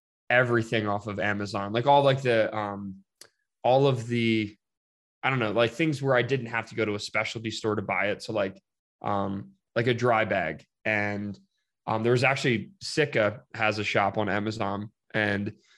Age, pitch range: 20-39, 105-125 Hz